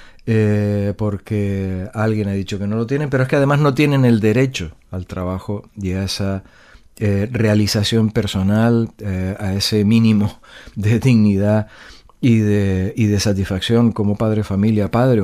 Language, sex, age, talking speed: Spanish, male, 40-59, 160 wpm